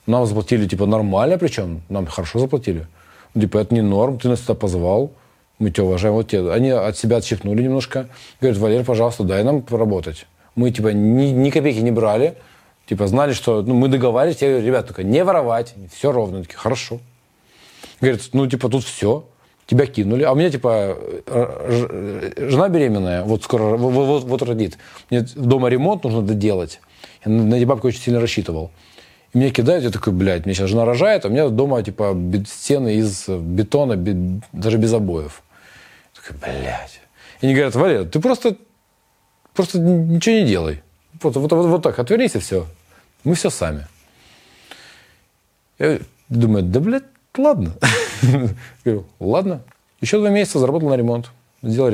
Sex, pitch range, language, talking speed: male, 100-130 Hz, Russian, 165 wpm